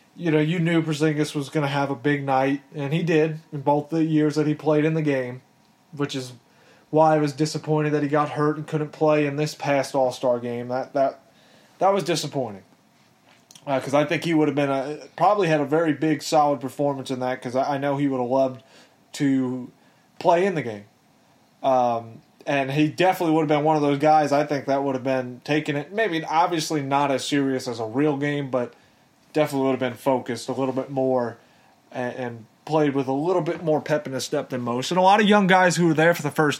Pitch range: 130-160 Hz